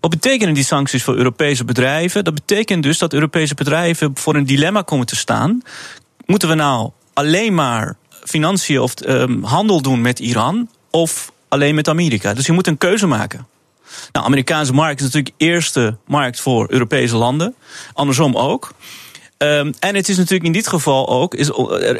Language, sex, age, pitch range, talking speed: Dutch, male, 30-49, 135-180 Hz, 175 wpm